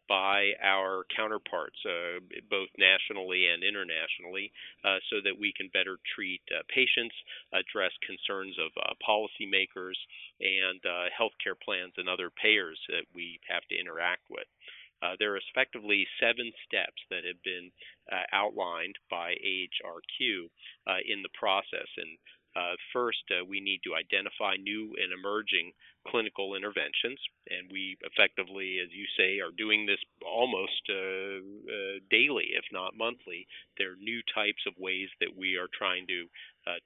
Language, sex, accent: English, male, American